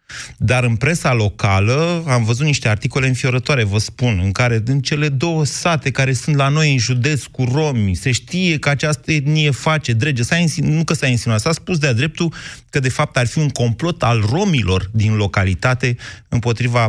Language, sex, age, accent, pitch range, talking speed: Romanian, male, 30-49, native, 115-150 Hz, 190 wpm